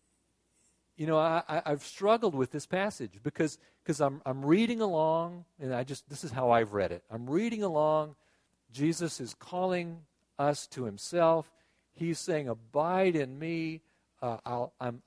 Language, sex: English, male